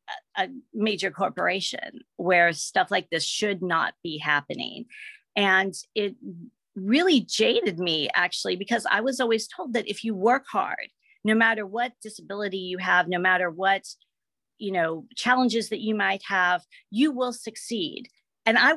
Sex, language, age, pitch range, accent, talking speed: female, English, 40-59, 190-235 Hz, American, 155 wpm